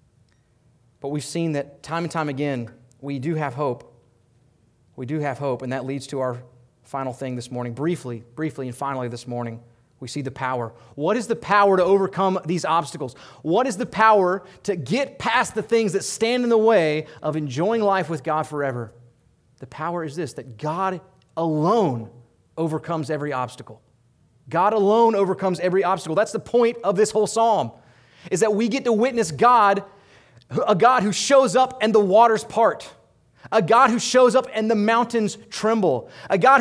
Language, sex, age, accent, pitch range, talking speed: English, male, 30-49, American, 140-225 Hz, 185 wpm